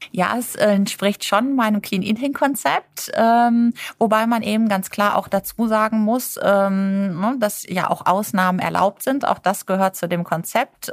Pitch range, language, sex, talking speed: 170-210 Hz, German, female, 150 wpm